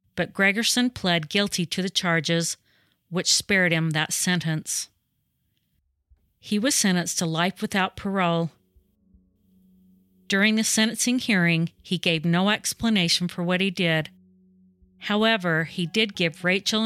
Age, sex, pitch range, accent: 40-59, female, 160-190 Hz, American